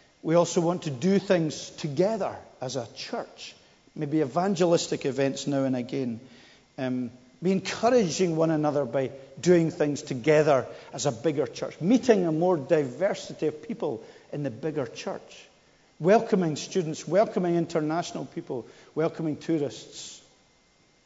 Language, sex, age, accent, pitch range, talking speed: English, male, 50-69, British, 140-180 Hz, 130 wpm